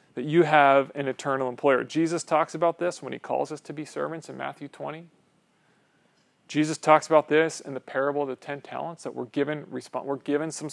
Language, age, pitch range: English, 30-49, 140-170 Hz